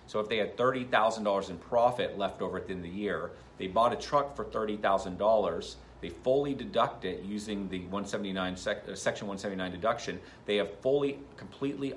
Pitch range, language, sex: 95-120 Hz, English, male